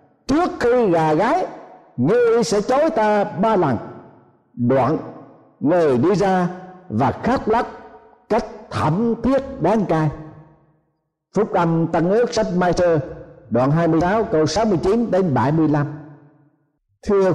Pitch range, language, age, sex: 160-240 Hz, Thai, 60-79, male